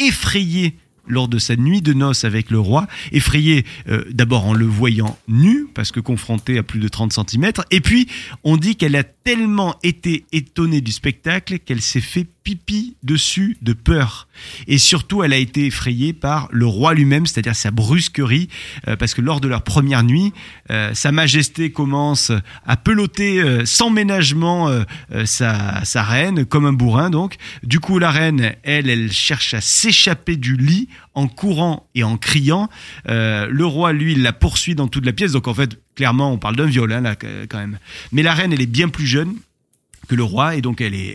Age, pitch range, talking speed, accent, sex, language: 30-49, 115-160 Hz, 195 wpm, French, male, French